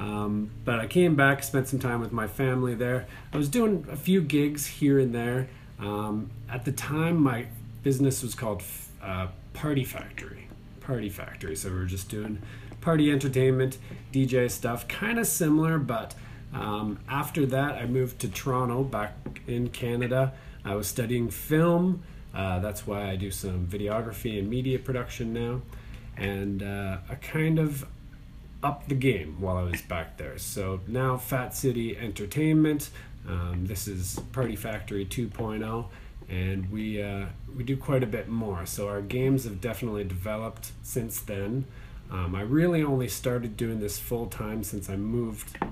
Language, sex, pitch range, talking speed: English, male, 105-130 Hz, 165 wpm